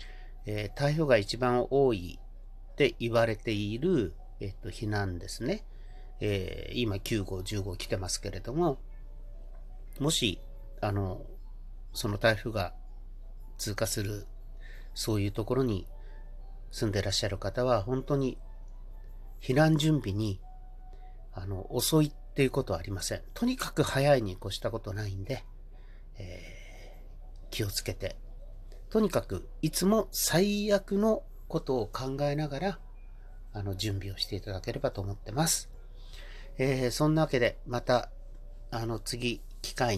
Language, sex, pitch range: Japanese, male, 100-125 Hz